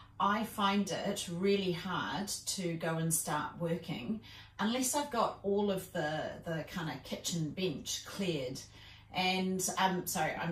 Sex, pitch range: female, 155-200 Hz